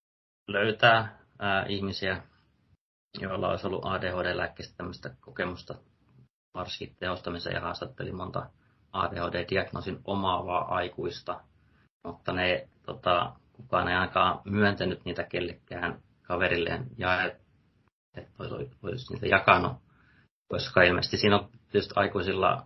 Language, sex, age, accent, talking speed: Finnish, male, 30-49, native, 105 wpm